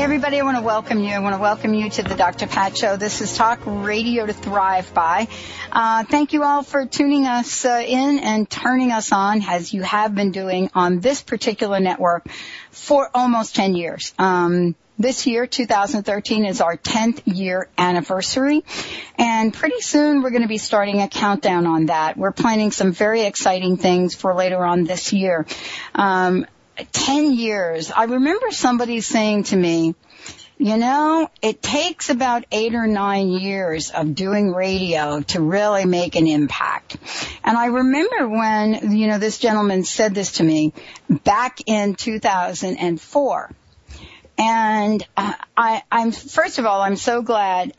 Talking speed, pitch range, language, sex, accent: 165 wpm, 185-240 Hz, English, female, American